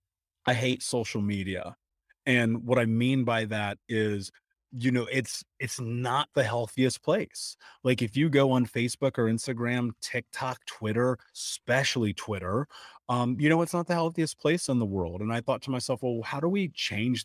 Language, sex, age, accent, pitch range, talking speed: English, male, 30-49, American, 110-130 Hz, 180 wpm